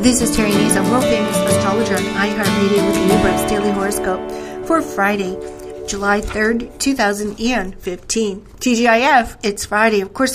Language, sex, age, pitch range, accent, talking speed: English, female, 40-59, 195-235 Hz, American, 135 wpm